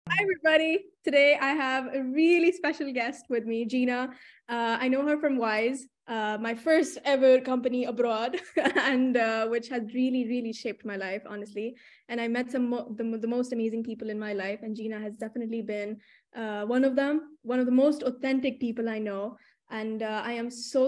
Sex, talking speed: female, 200 wpm